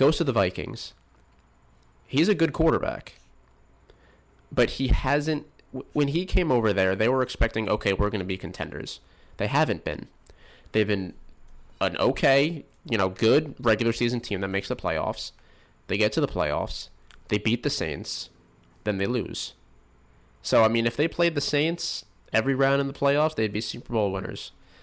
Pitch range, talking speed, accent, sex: 95-130 Hz, 175 wpm, American, male